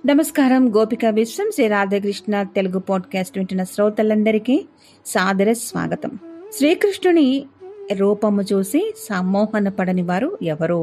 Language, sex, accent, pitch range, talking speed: Telugu, female, native, 190-285 Hz, 95 wpm